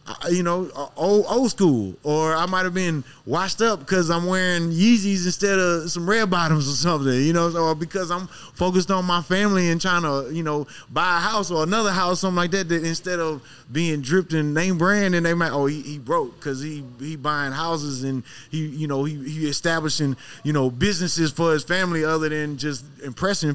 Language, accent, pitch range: English, American, 145-185 Hz